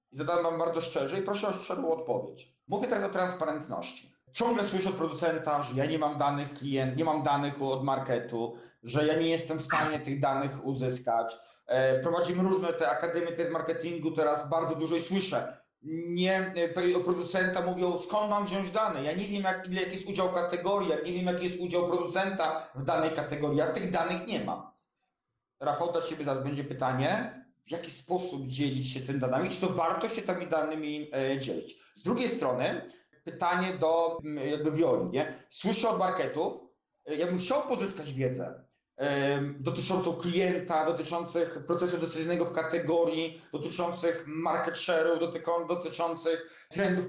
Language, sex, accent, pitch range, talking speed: Polish, male, native, 150-185 Hz, 155 wpm